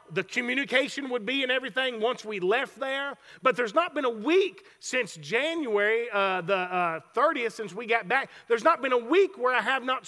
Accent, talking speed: American, 210 wpm